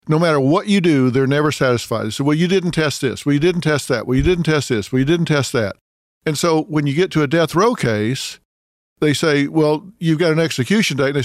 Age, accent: 50-69, American